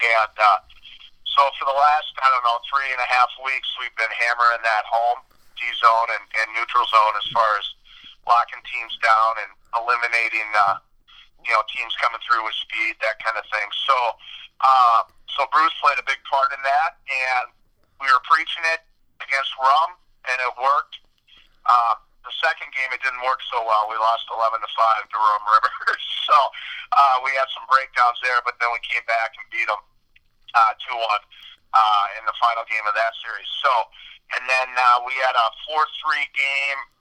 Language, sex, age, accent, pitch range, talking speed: English, male, 50-69, American, 115-135 Hz, 190 wpm